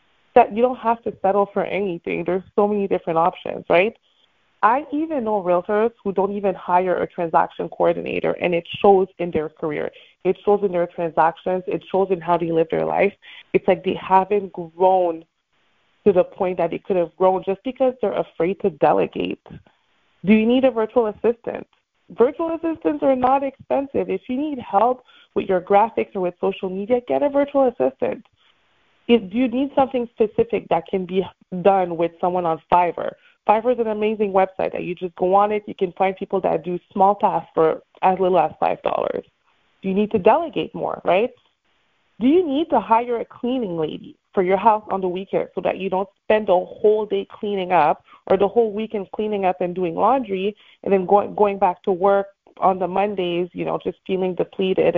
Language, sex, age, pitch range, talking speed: English, female, 20-39, 180-225 Hz, 195 wpm